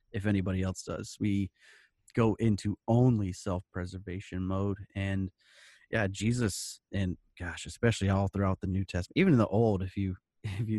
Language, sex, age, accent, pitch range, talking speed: English, male, 30-49, American, 95-110 Hz, 160 wpm